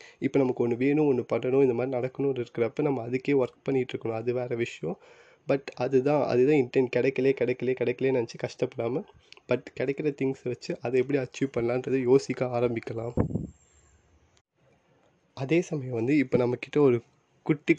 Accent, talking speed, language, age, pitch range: native, 150 wpm, Tamil, 20-39, 120-140 Hz